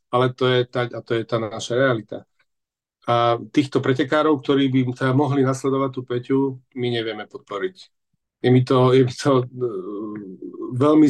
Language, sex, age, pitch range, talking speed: Slovak, male, 40-59, 120-135 Hz, 155 wpm